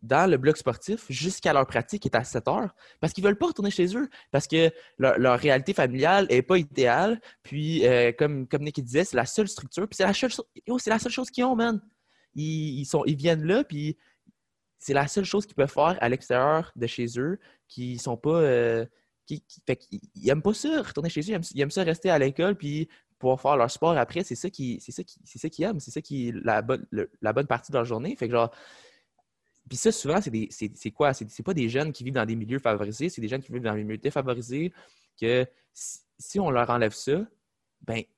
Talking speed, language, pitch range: 240 wpm, French, 120-175 Hz